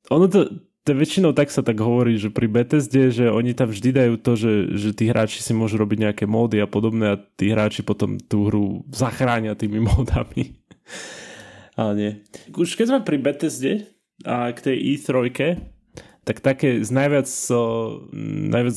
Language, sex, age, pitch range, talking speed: Slovak, male, 20-39, 110-135 Hz, 175 wpm